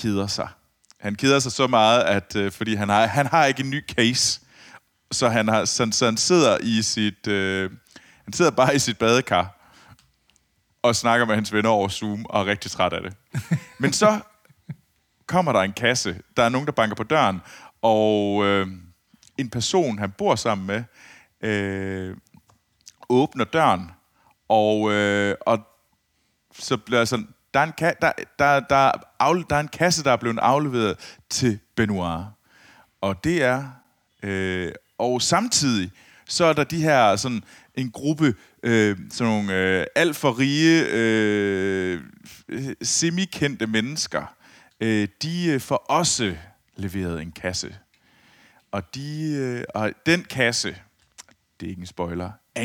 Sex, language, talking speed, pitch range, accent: male, Danish, 160 wpm, 100-135 Hz, native